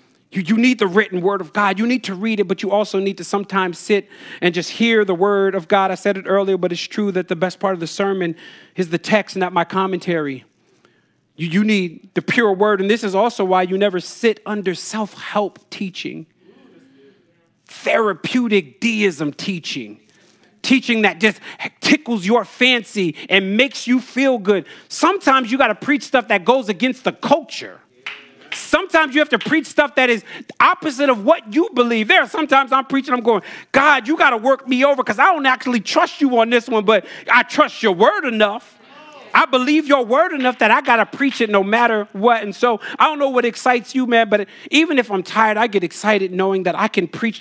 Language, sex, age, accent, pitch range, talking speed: English, male, 40-59, American, 190-250 Hz, 210 wpm